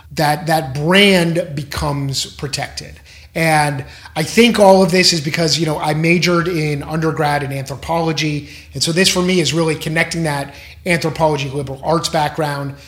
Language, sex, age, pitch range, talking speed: English, male, 30-49, 140-170 Hz, 160 wpm